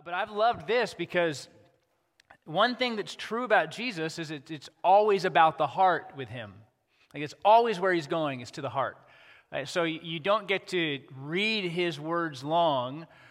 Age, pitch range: 30-49, 145-190 Hz